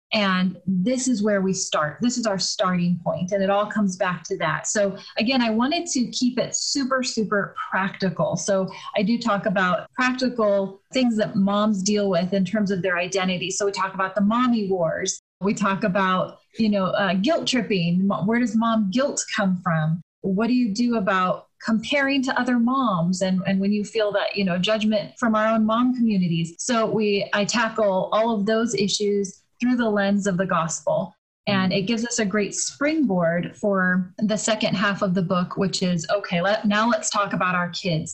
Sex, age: female, 30-49